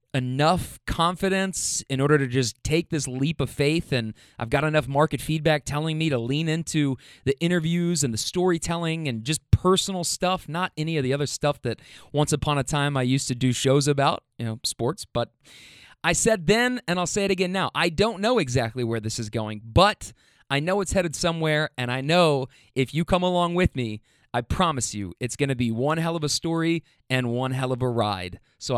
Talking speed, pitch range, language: 215 wpm, 130-170 Hz, English